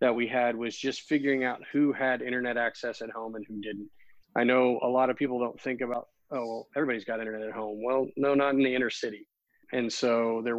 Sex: male